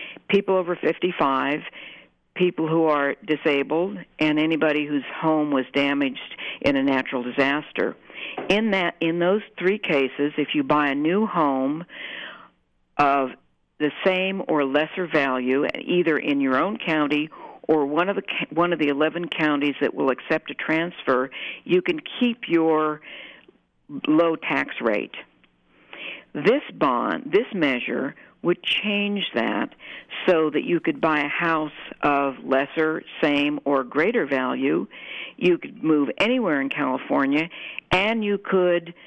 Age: 60-79